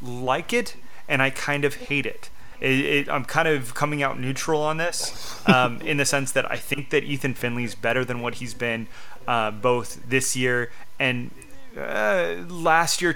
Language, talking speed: English, 190 wpm